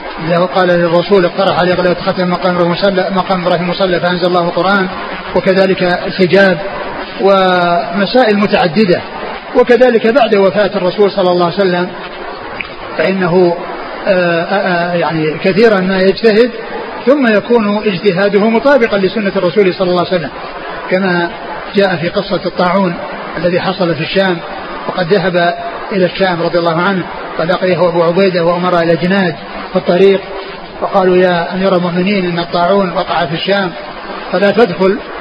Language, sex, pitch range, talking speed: Arabic, male, 180-200 Hz, 130 wpm